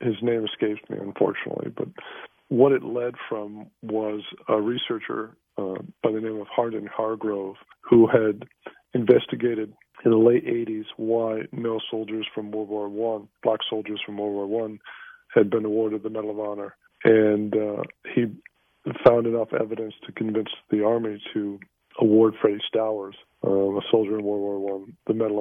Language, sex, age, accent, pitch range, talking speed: English, male, 40-59, American, 105-115 Hz, 165 wpm